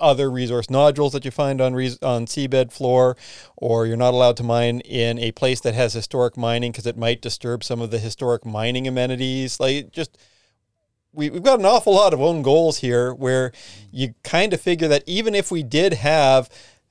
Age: 40-59